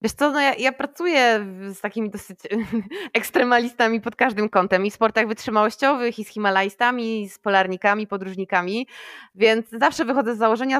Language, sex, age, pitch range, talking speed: Polish, female, 20-39, 200-240 Hz, 165 wpm